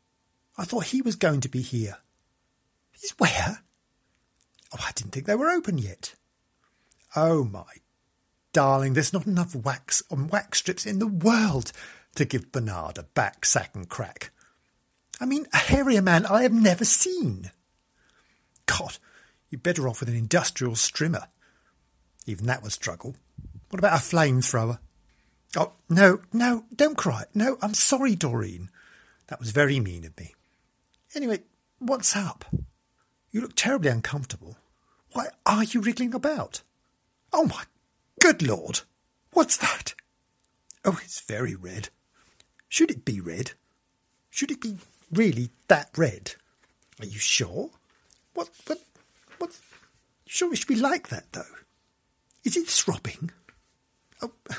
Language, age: English, 50-69